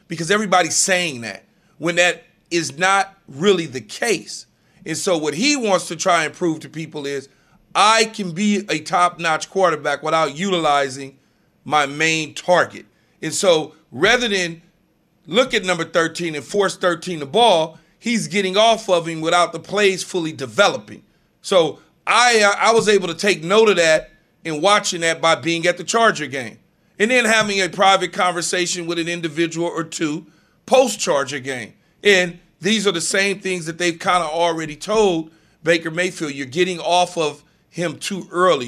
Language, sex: English, male